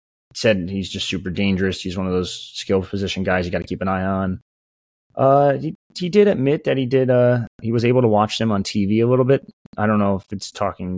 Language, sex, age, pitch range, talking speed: English, male, 20-39, 90-110 Hz, 245 wpm